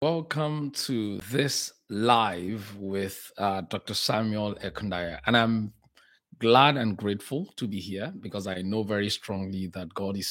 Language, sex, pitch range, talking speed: English, male, 95-115 Hz, 145 wpm